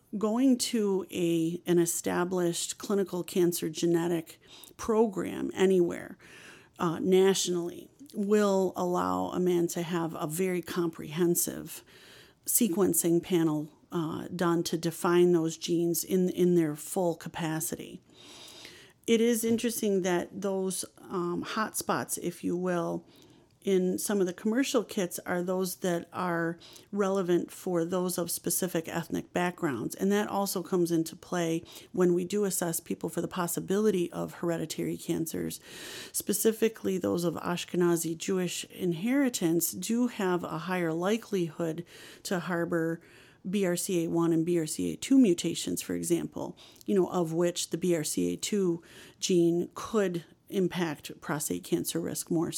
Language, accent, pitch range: English, American, 170-190 Hz